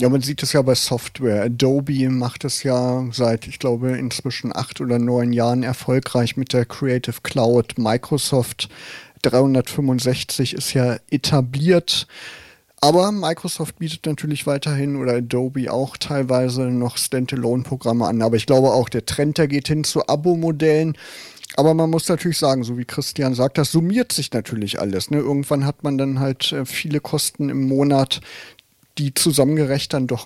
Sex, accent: male, German